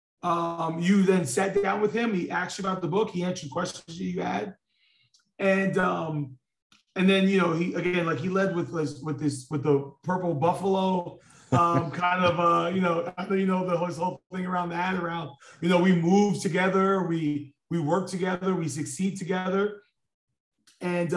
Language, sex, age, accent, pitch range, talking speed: English, male, 30-49, American, 165-200 Hz, 185 wpm